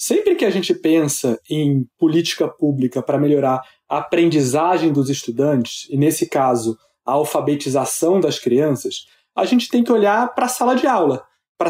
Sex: male